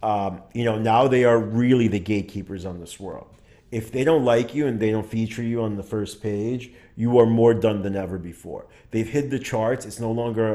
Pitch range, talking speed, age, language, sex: 105-120 Hz, 230 wpm, 30-49, English, male